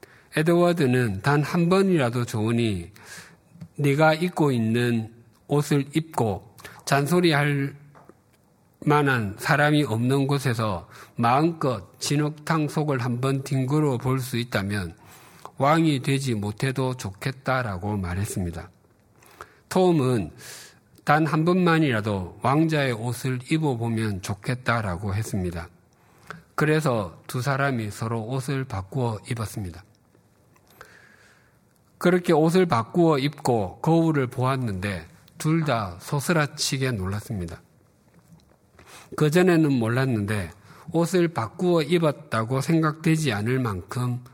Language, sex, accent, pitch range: Korean, male, native, 110-155 Hz